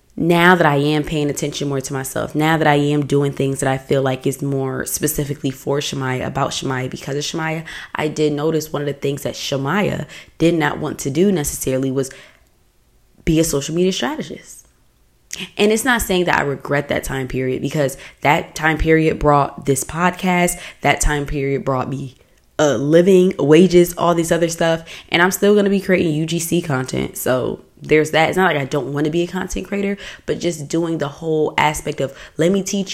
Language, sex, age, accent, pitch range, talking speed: English, female, 20-39, American, 145-185 Hz, 205 wpm